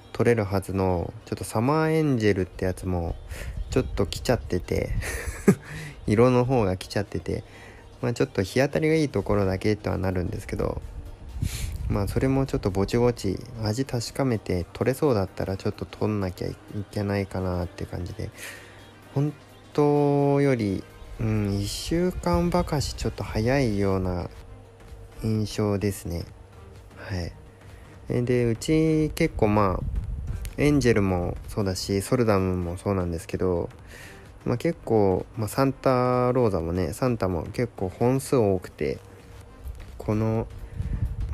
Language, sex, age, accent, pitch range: Japanese, male, 20-39, native, 95-125 Hz